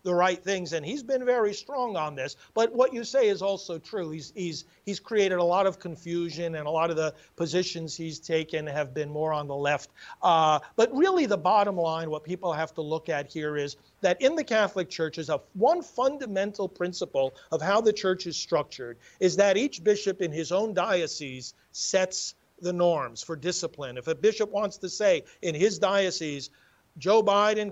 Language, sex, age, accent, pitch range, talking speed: English, male, 50-69, American, 165-215 Hz, 200 wpm